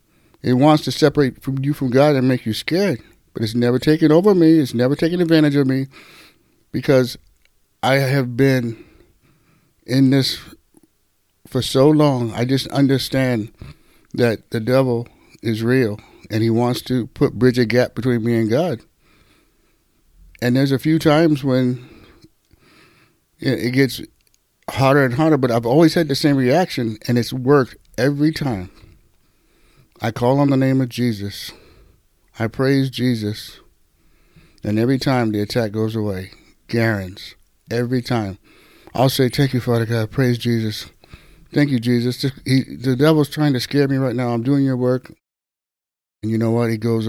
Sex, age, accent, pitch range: male, 60-79, American, 115-140 Hz